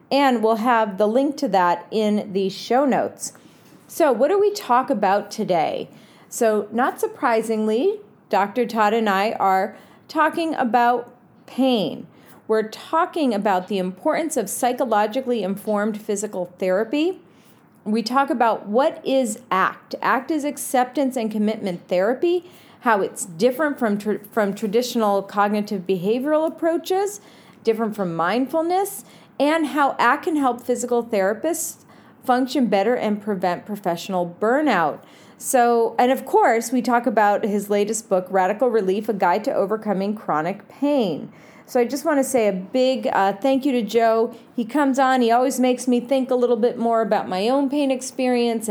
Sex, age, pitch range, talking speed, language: female, 40-59, 205-265 Hz, 155 wpm, English